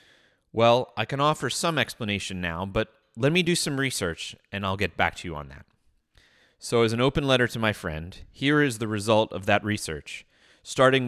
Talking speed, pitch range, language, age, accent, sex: 200 wpm, 100-130 Hz, English, 30-49, American, male